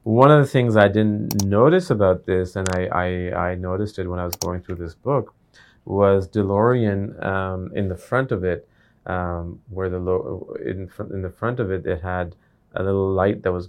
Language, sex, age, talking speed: English, male, 30-49, 200 wpm